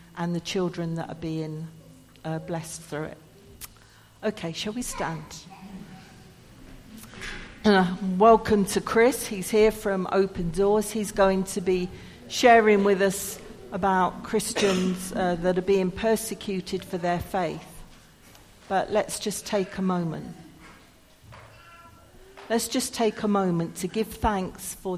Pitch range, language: 170-195 Hz, English